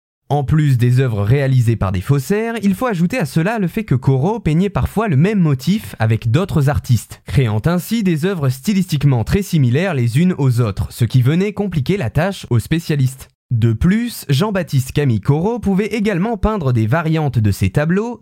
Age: 20-39